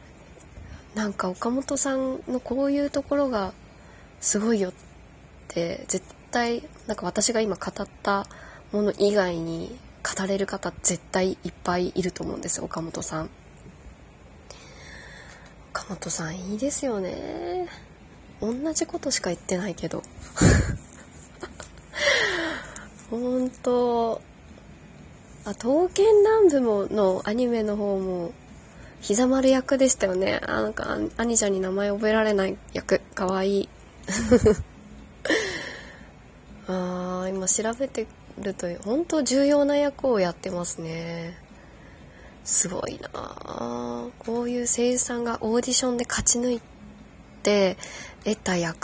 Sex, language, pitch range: female, Japanese, 185-250 Hz